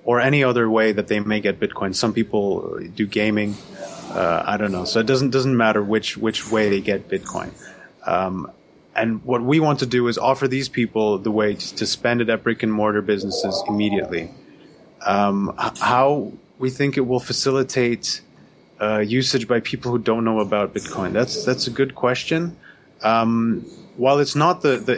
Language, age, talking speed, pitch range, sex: English, 30-49, 185 wpm, 105-125 Hz, male